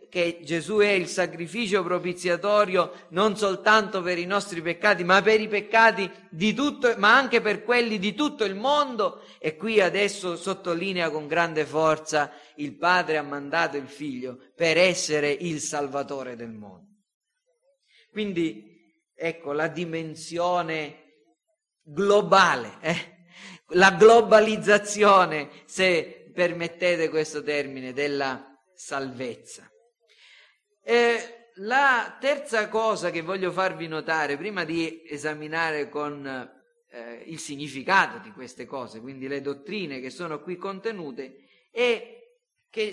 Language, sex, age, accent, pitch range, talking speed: Italian, male, 40-59, native, 155-205 Hz, 120 wpm